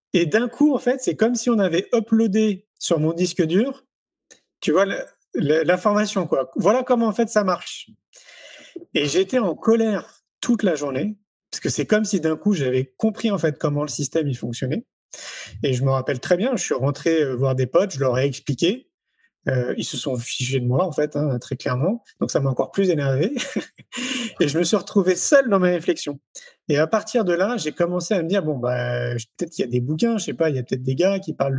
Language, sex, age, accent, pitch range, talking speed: French, male, 30-49, French, 145-210 Hz, 230 wpm